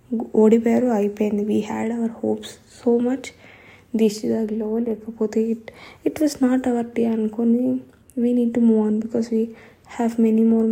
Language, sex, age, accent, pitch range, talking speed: Telugu, female, 20-39, native, 225-245 Hz, 170 wpm